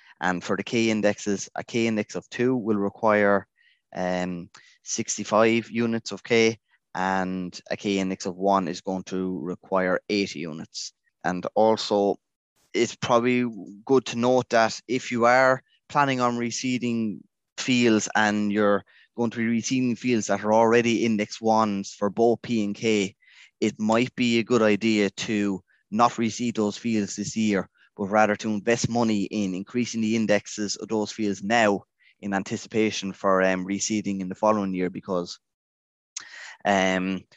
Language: English